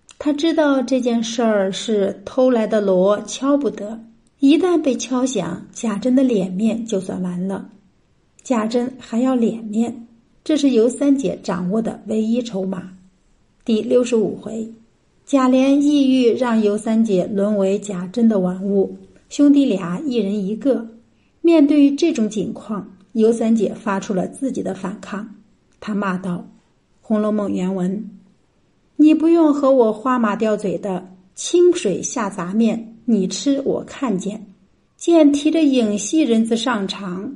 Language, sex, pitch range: Chinese, female, 205-265 Hz